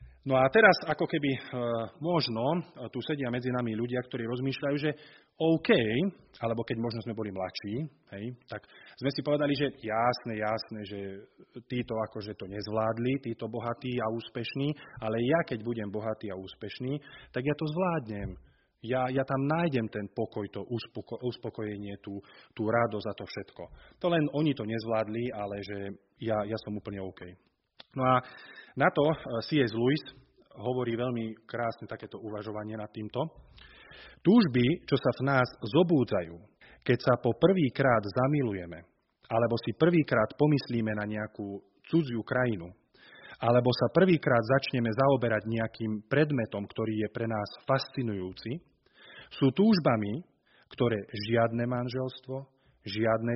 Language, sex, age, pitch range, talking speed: Slovak, male, 30-49, 110-135 Hz, 140 wpm